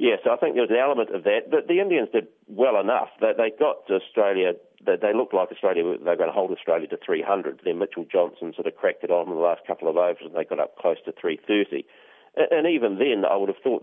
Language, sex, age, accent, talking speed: English, male, 40-59, Australian, 260 wpm